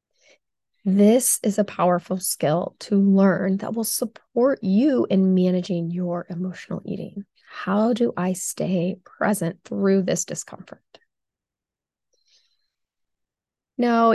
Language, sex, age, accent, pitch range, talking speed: English, female, 20-39, American, 185-215 Hz, 105 wpm